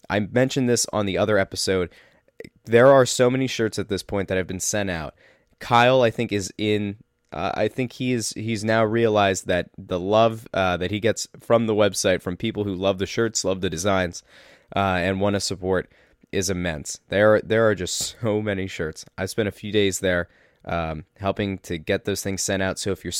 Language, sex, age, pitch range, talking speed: English, male, 20-39, 95-115 Hz, 210 wpm